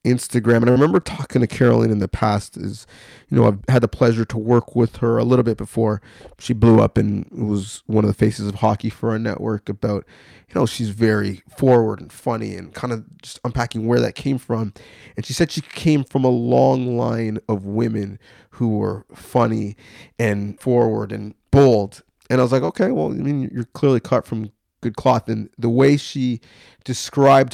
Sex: male